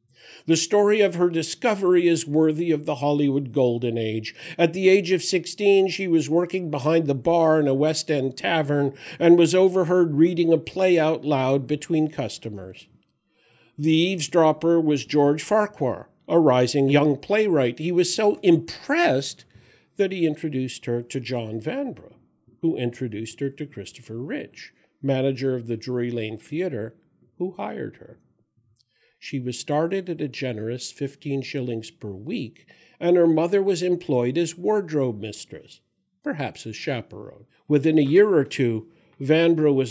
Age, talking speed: 50-69, 150 wpm